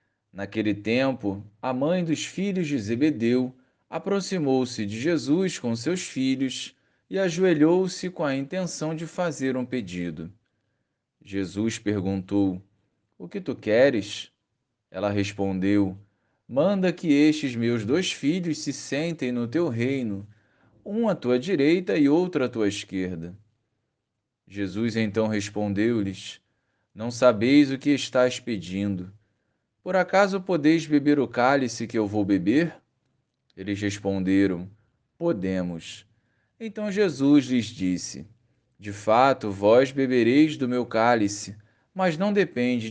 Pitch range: 105-150 Hz